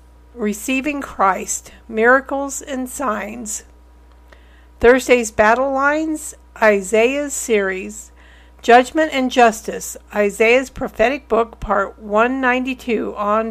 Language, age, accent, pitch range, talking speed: English, 50-69, American, 195-260 Hz, 85 wpm